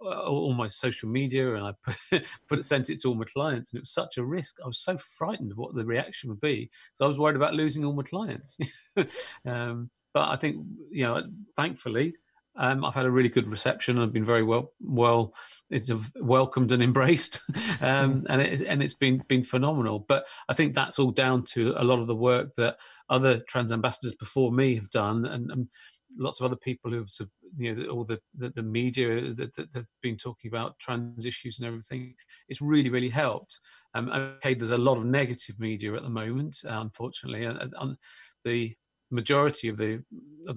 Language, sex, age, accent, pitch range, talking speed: English, male, 40-59, British, 115-135 Hz, 205 wpm